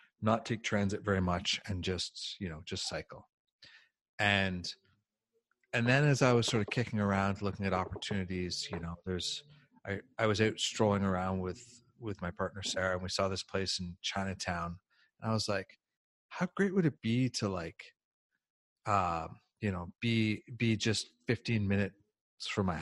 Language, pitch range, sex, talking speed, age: English, 95-115 Hz, male, 175 wpm, 30-49